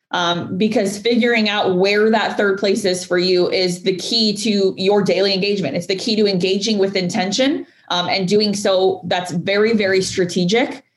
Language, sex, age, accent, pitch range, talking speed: English, female, 20-39, American, 180-215 Hz, 180 wpm